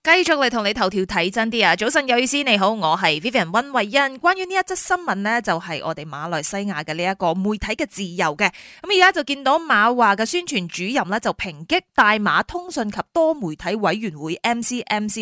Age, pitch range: 20-39, 185-265 Hz